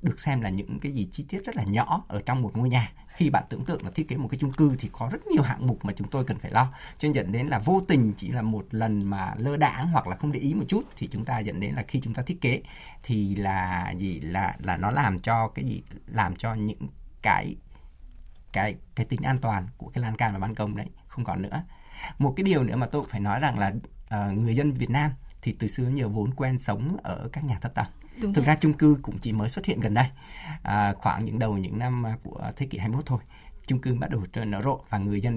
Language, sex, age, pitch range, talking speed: Vietnamese, male, 20-39, 100-135 Hz, 270 wpm